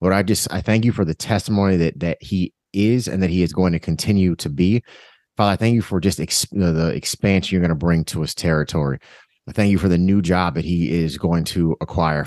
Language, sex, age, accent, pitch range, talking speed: English, male, 30-49, American, 85-100 Hz, 260 wpm